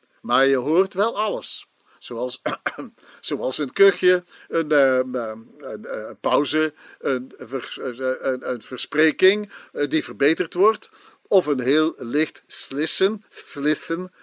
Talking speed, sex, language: 100 wpm, male, Dutch